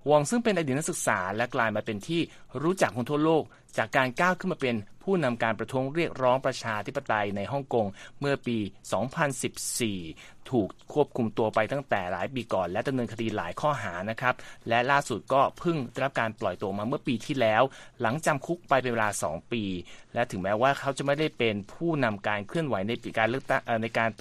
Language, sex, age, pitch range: Thai, male, 30-49, 110-145 Hz